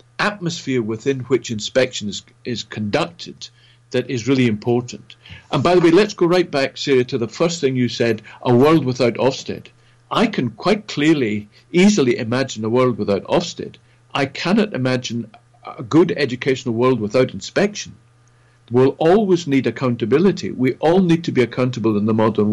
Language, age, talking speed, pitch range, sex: English, 50-69, 160 wpm, 115-160 Hz, male